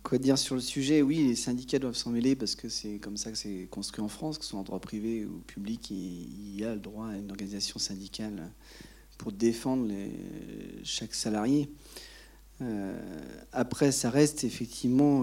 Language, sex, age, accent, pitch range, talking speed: French, male, 40-59, French, 110-130 Hz, 195 wpm